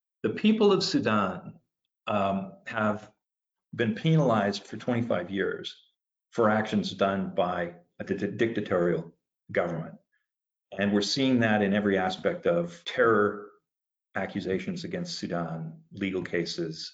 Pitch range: 100-125 Hz